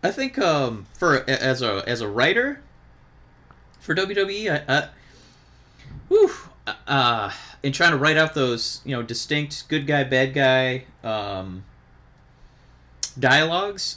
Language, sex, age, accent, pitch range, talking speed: English, male, 30-49, American, 110-145 Hz, 130 wpm